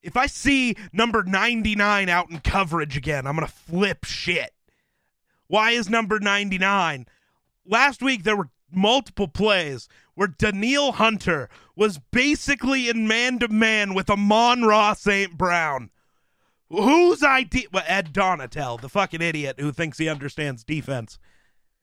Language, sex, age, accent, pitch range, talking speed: English, male, 30-49, American, 145-205 Hz, 140 wpm